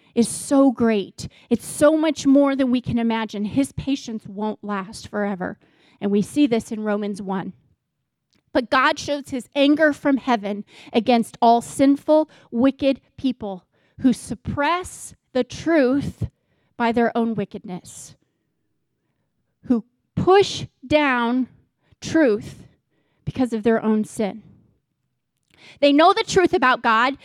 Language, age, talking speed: English, 30-49, 130 wpm